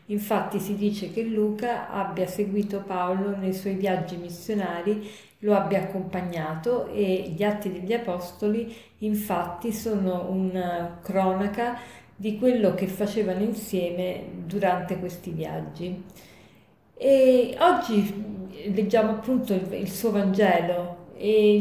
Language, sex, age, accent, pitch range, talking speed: Italian, female, 40-59, native, 185-225 Hz, 110 wpm